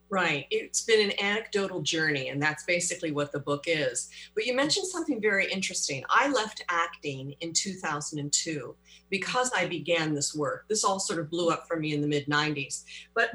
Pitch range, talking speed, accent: 160-210 Hz, 185 wpm, American